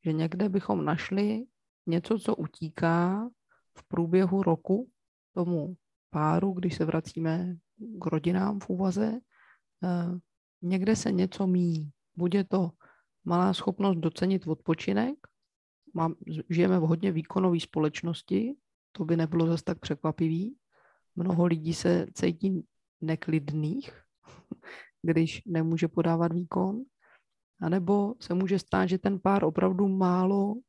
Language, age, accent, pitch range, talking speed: Czech, 30-49, native, 165-195 Hz, 115 wpm